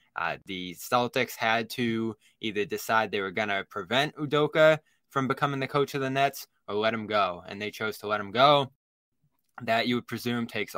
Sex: male